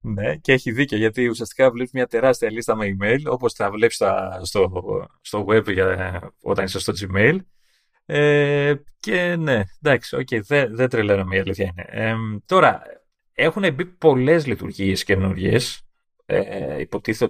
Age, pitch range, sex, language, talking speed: 30-49, 100-145 Hz, male, Greek, 130 wpm